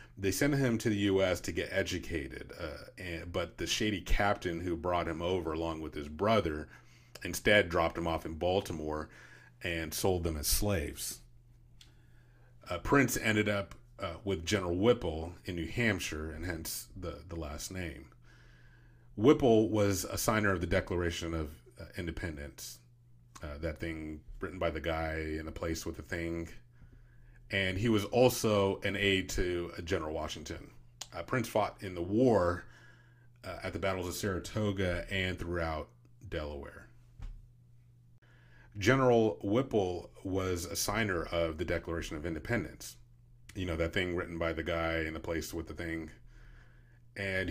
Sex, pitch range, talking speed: male, 85-120 Hz, 155 wpm